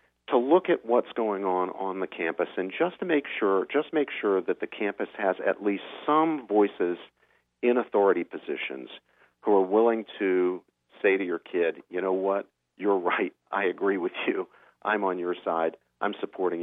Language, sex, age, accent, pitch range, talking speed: English, male, 50-69, American, 85-140 Hz, 175 wpm